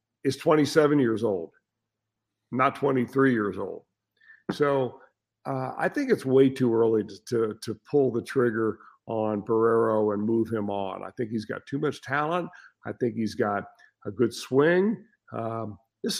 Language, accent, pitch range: English, American, 115-160 Hz